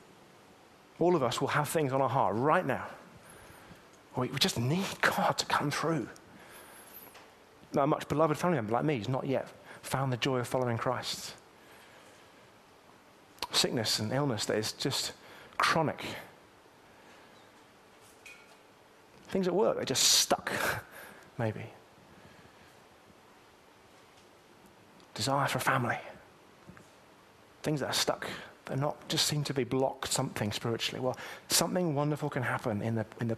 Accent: British